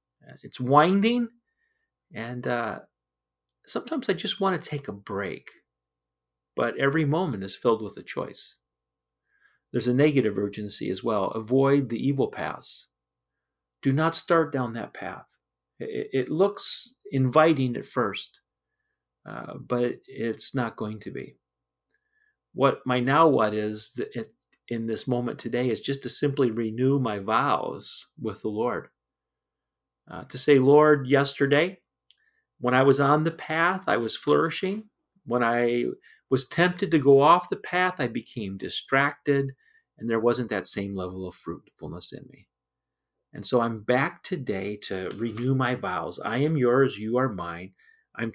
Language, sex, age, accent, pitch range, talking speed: English, male, 40-59, American, 110-155 Hz, 150 wpm